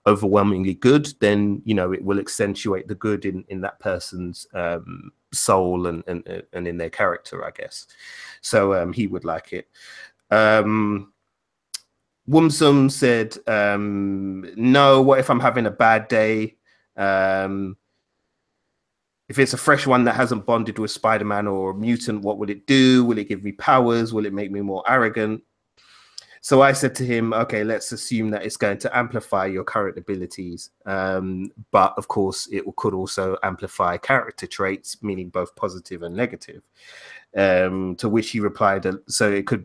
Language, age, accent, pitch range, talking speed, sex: English, 30-49, British, 95-125 Hz, 165 wpm, male